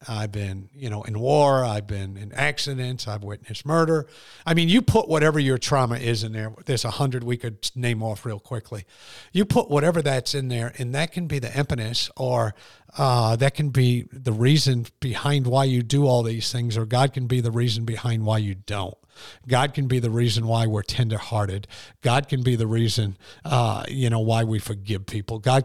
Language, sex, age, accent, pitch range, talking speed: English, male, 50-69, American, 110-135 Hz, 210 wpm